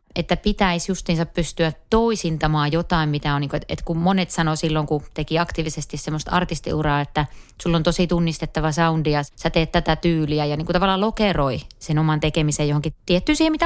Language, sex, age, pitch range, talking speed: Finnish, female, 30-49, 155-195 Hz, 190 wpm